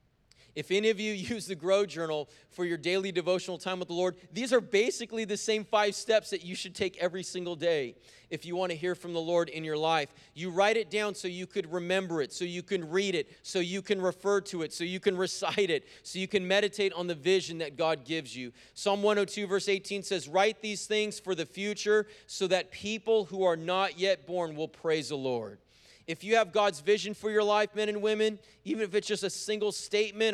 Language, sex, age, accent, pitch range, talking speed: English, male, 30-49, American, 155-205 Hz, 235 wpm